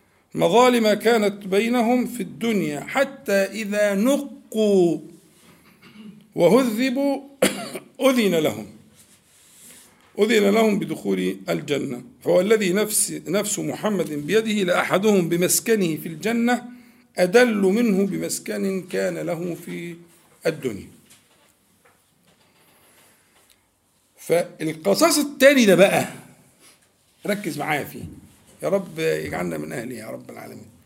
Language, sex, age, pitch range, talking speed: Arabic, male, 50-69, 180-245 Hz, 90 wpm